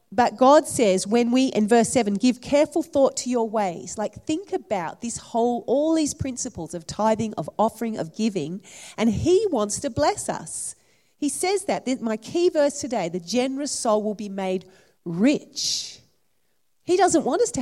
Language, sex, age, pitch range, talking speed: English, female, 40-59, 200-280 Hz, 180 wpm